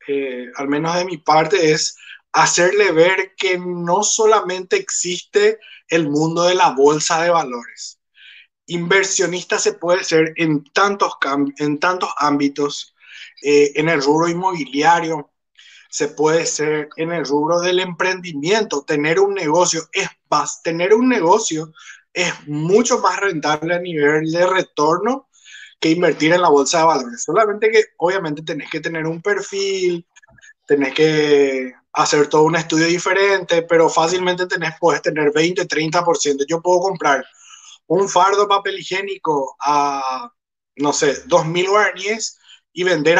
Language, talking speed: Spanish, 140 wpm